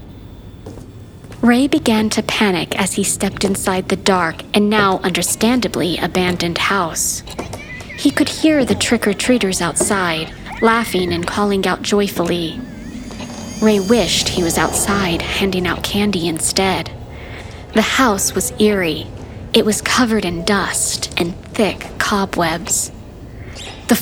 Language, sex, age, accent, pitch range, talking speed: English, female, 40-59, American, 175-220 Hz, 120 wpm